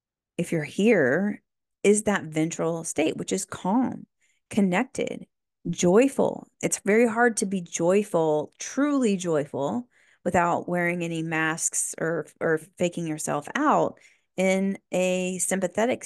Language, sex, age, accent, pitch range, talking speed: English, female, 30-49, American, 160-185 Hz, 120 wpm